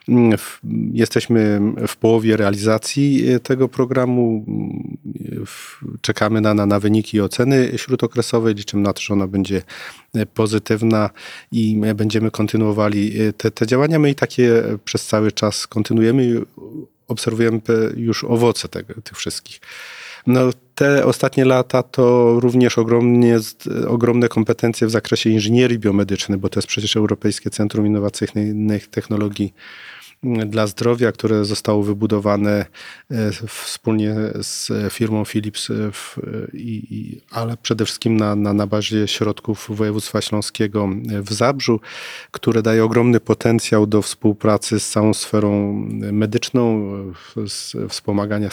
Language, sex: Polish, male